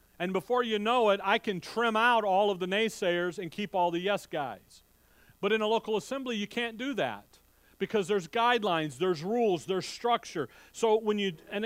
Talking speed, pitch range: 200 wpm, 155-210 Hz